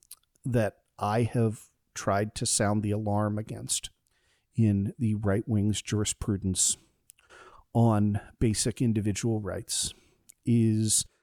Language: English